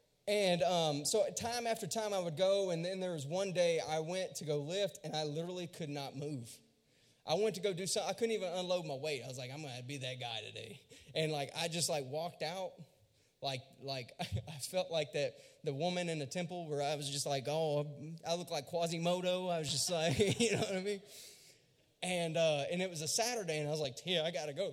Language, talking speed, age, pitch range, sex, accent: English, 250 wpm, 20-39, 145-190 Hz, male, American